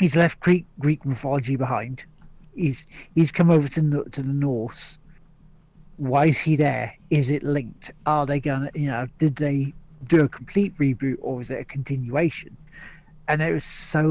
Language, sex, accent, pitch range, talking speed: English, male, British, 130-155 Hz, 175 wpm